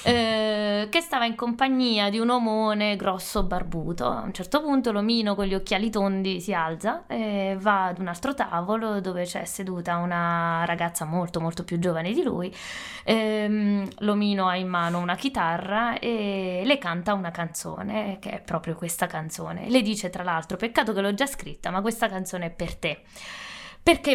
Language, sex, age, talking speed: Italian, female, 20-39, 175 wpm